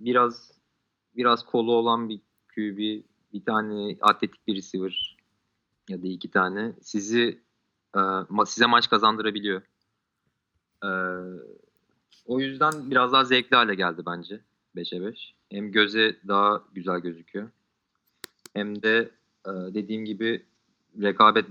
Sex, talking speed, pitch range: male, 110 wpm, 100-120 Hz